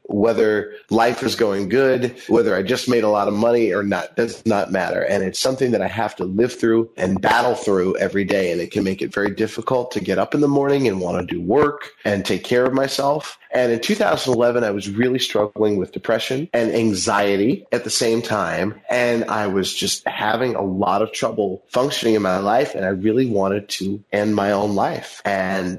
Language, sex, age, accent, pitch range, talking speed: English, male, 30-49, American, 100-125 Hz, 215 wpm